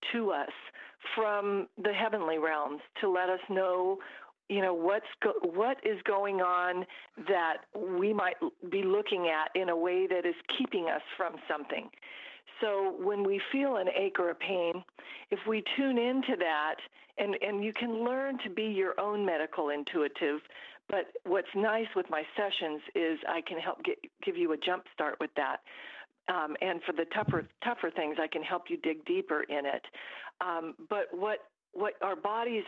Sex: female